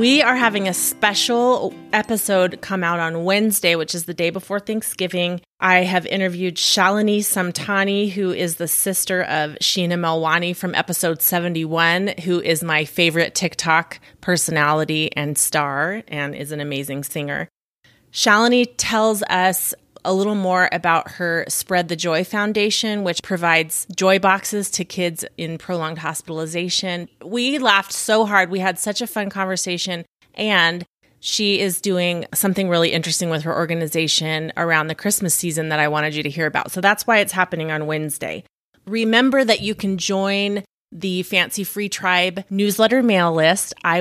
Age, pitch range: 30-49, 165-200 Hz